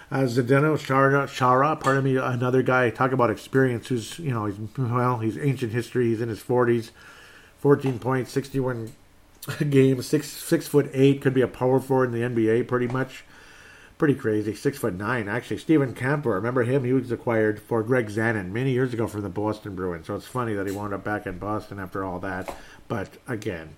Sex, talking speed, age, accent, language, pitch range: male, 205 wpm, 50-69, American, English, 105-130 Hz